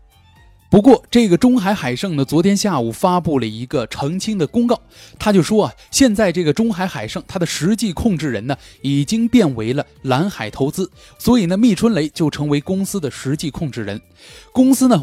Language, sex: Chinese, male